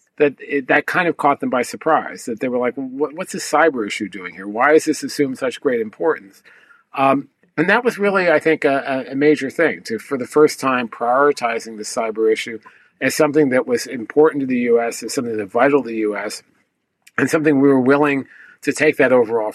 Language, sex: English, male